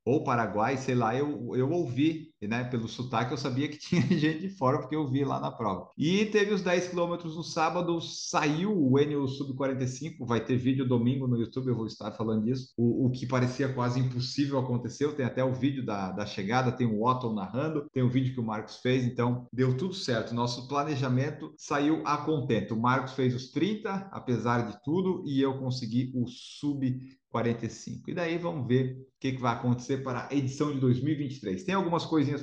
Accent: Brazilian